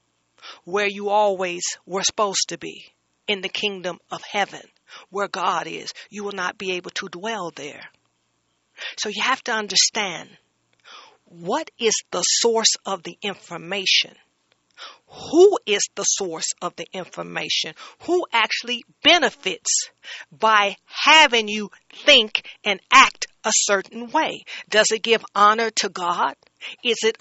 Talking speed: 135 wpm